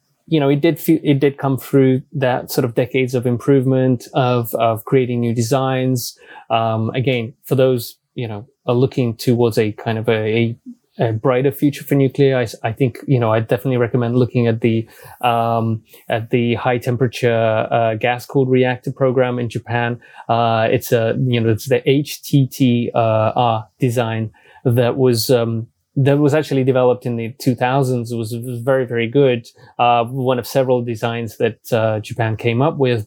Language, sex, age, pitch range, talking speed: English, male, 20-39, 115-130 Hz, 170 wpm